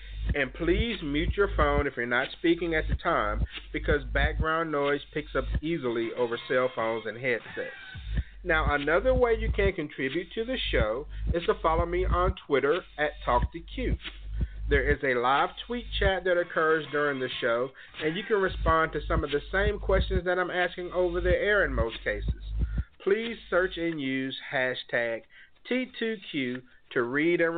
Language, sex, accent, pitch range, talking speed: English, male, American, 140-190 Hz, 170 wpm